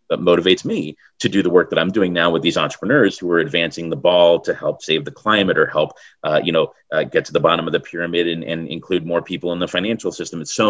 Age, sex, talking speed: 30-49, male, 270 wpm